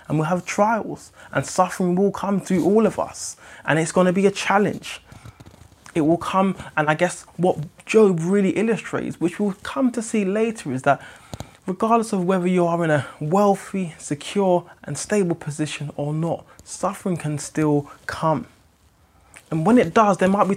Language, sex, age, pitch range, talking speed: English, male, 20-39, 140-190 Hz, 180 wpm